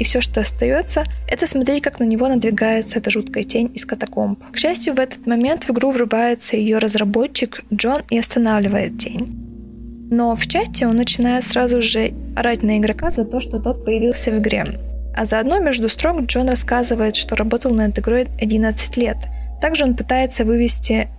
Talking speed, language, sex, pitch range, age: 180 wpm, Russian, female, 220-255 Hz, 20-39